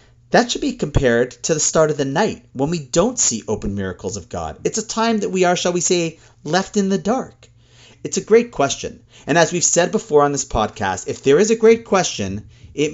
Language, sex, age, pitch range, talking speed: English, male, 40-59, 120-200 Hz, 230 wpm